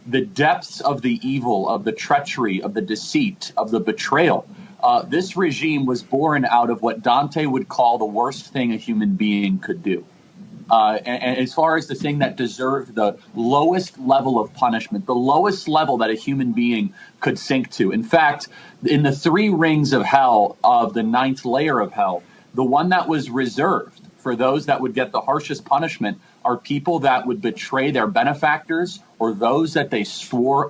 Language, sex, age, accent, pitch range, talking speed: English, male, 40-59, American, 120-175 Hz, 190 wpm